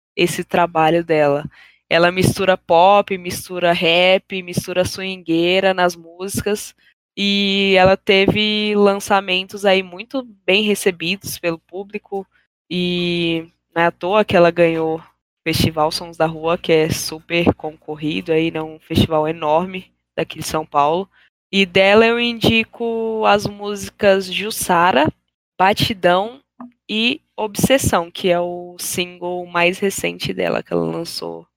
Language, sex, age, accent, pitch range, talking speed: Portuguese, female, 10-29, Brazilian, 160-195 Hz, 125 wpm